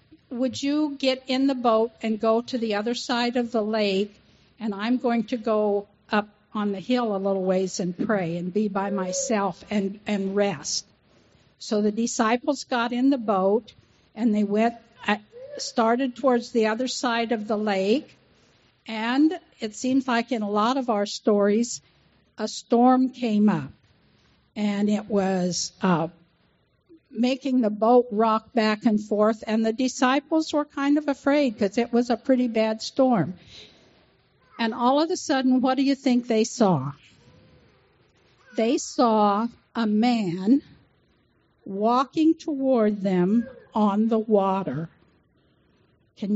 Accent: American